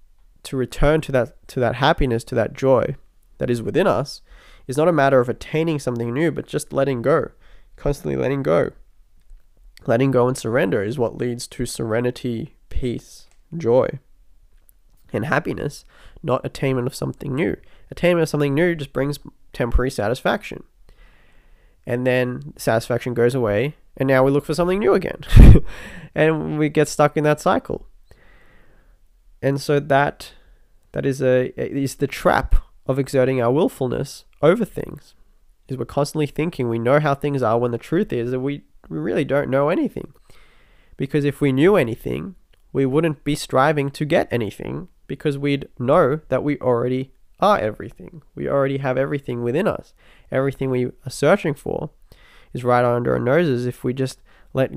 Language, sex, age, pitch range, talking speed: English, male, 20-39, 120-145 Hz, 165 wpm